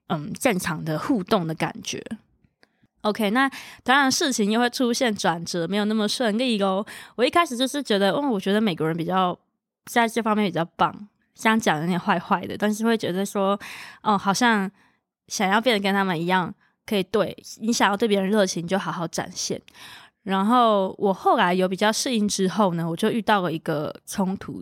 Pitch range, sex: 180-230 Hz, female